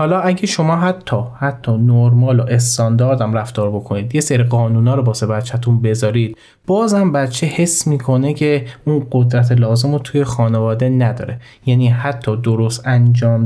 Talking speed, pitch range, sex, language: 160 wpm, 120-145 Hz, male, Persian